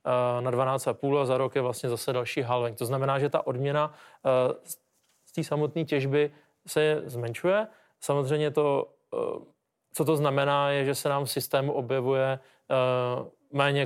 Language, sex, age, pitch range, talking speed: Slovak, male, 30-49, 130-145 Hz, 145 wpm